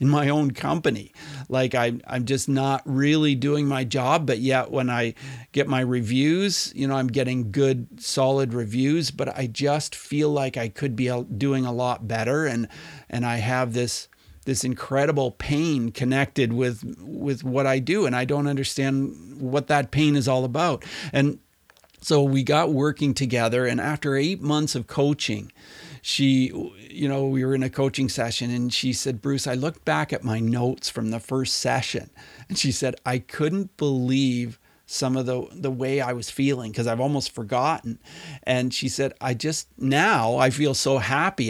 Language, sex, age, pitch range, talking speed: English, male, 50-69, 125-140 Hz, 180 wpm